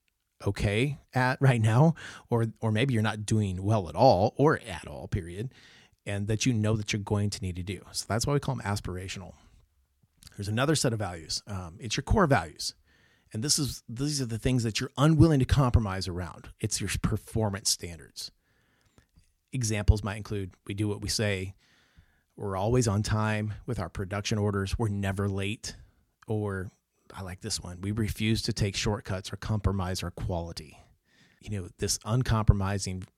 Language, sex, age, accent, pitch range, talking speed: English, male, 30-49, American, 95-115 Hz, 180 wpm